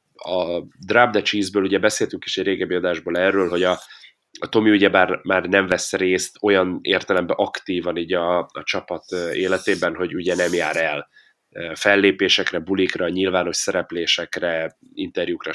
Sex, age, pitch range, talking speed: male, 30-49, 90-115 Hz, 145 wpm